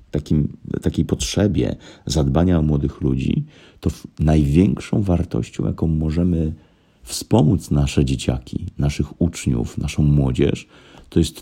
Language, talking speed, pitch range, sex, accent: Polish, 105 wpm, 70-90 Hz, male, native